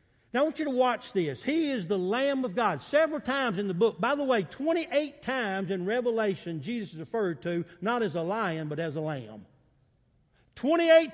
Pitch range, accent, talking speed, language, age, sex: 190-285 Hz, American, 200 wpm, English, 50-69, male